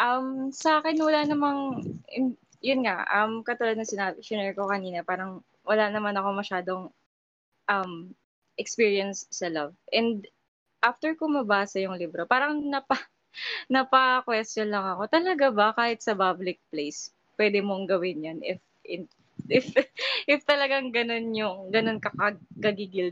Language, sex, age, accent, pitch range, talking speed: English, female, 20-39, Filipino, 185-250 Hz, 140 wpm